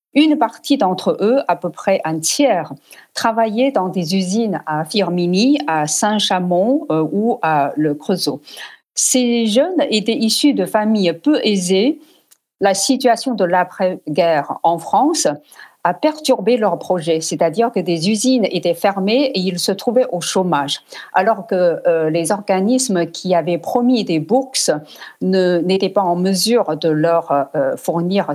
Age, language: 50-69, French